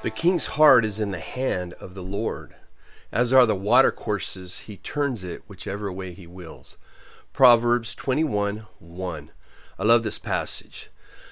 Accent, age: American, 40-59